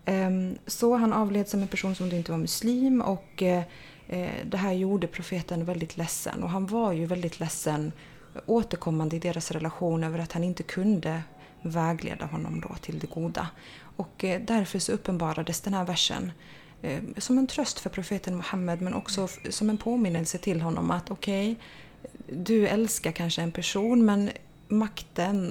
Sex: female